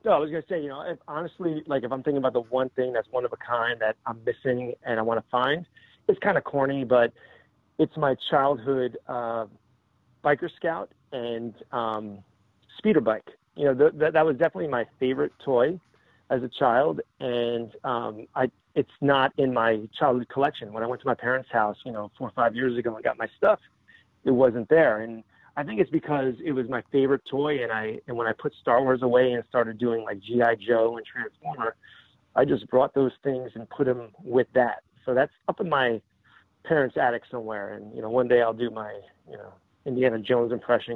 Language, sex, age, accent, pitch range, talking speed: English, male, 30-49, American, 115-135 Hz, 215 wpm